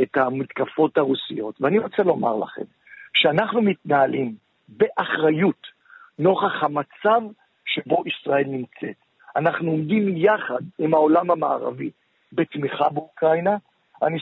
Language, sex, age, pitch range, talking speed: Hebrew, male, 50-69, 165-220 Hz, 100 wpm